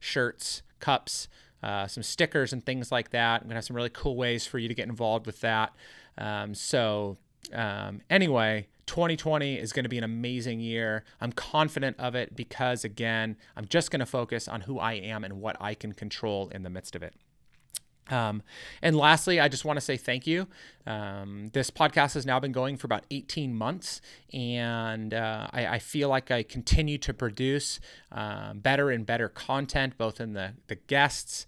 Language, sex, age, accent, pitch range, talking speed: English, male, 30-49, American, 110-135 Hz, 185 wpm